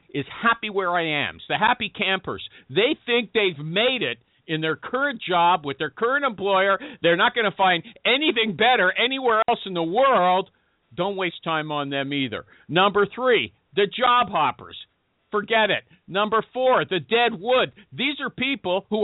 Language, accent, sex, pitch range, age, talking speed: English, American, male, 150-220 Hz, 50-69, 175 wpm